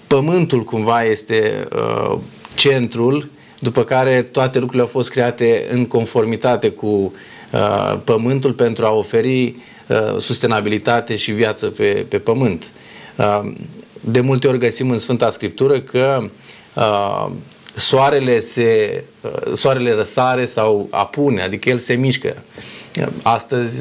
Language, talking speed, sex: Romanian, 105 wpm, male